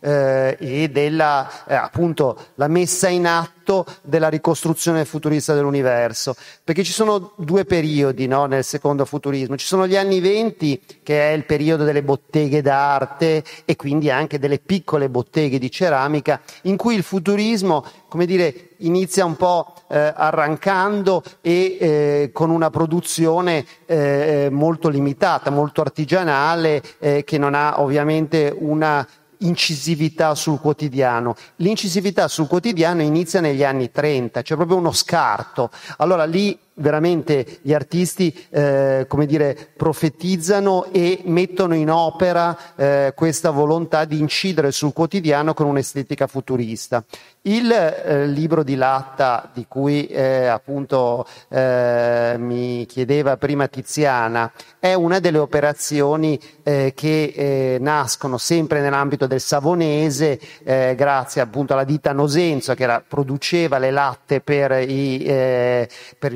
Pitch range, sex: 140-170 Hz, male